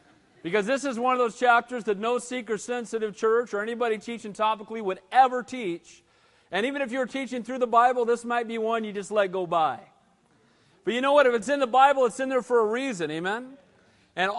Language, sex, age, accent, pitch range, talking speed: English, male, 40-59, American, 205-255 Hz, 220 wpm